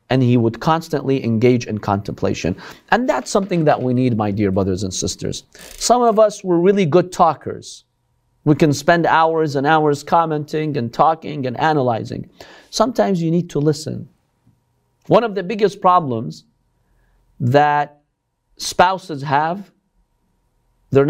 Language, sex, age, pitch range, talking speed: English, male, 50-69, 140-215 Hz, 140 wpm